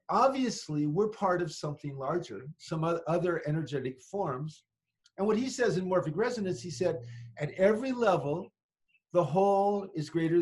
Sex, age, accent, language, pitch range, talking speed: male, 40-59, American, English, 145-190 Hz, 150 wpm